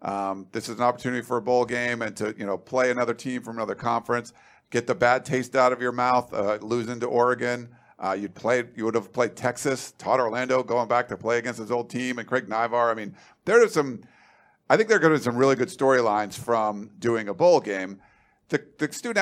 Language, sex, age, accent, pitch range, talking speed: English, male, 50-69, American, 120-145 Hz, 235 wpm